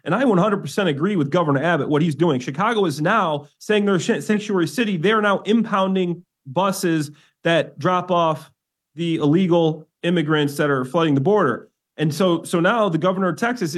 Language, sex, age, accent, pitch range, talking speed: English, male, 30-49, American, 160-200 Hz, 175 wpm